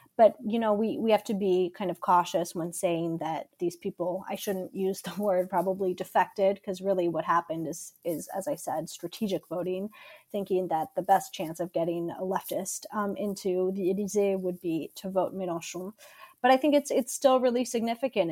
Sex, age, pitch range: female, 30-49, 175-205 Hz